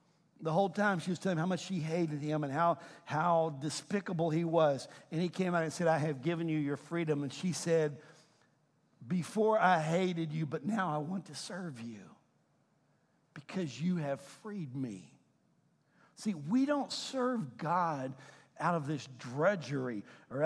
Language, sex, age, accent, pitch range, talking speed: English, male, 60-79, American, 140-175 Hz, 170 wpm